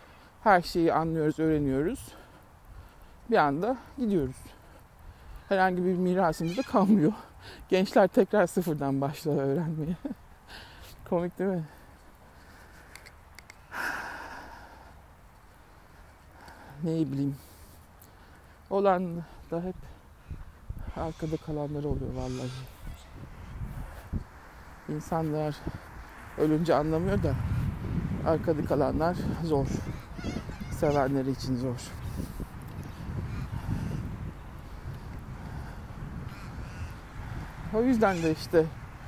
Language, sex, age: Turkish, male, 60-79